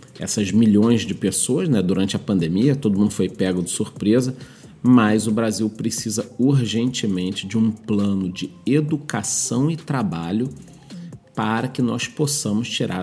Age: 40-59